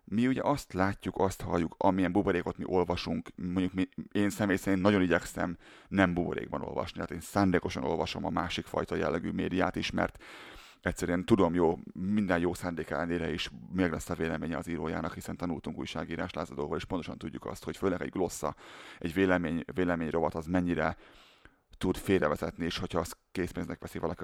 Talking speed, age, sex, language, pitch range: 175 wpm, 30-49, male, Hungarian, 80-95 Hz